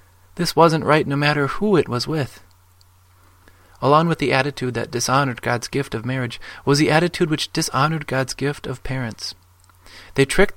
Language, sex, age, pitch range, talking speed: English, male, 30-49, 95-145 Hz, 170 wpm